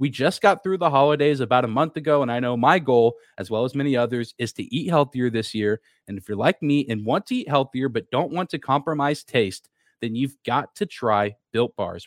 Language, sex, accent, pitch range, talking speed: English, male, American, 120-155 Hz, 245 wpm